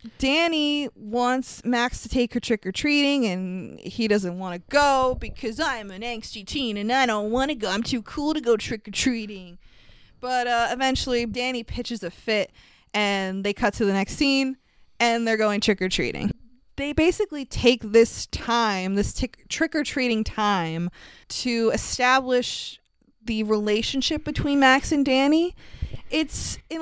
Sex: female